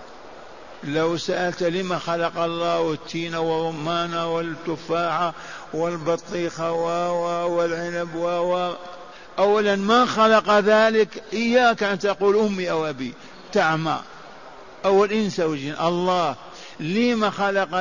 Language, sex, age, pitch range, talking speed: Arabic, male, 50-69, 175-200 Hz, 95 wpm